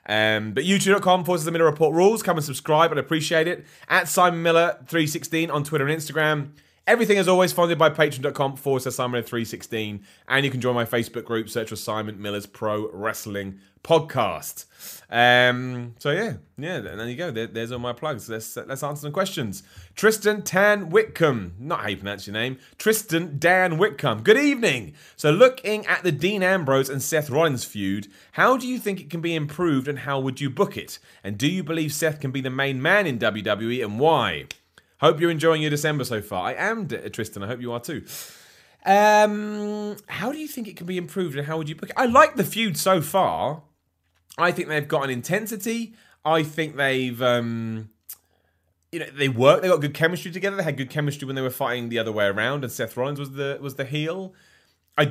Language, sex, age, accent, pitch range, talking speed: English, male, 30-49, British, 120-175 Hz, 205 wpm